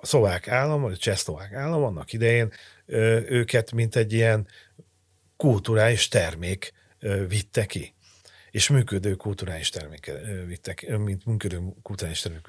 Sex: male